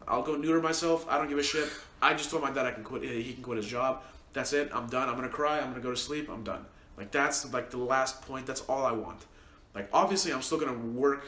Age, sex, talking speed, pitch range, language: 20-39, male, 275 wpm, 115-140 Hz, English